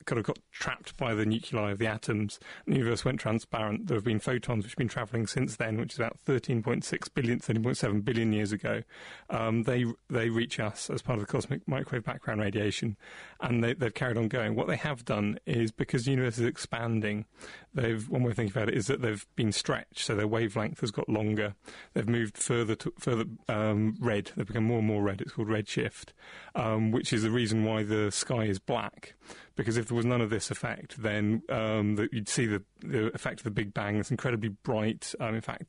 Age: 30-49